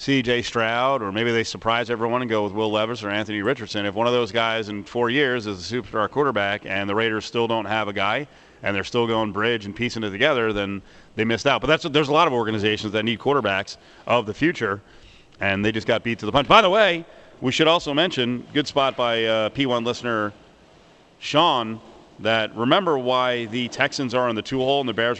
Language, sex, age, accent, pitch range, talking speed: English, male, 40-59, American, 110-150 Hz, 225 wpm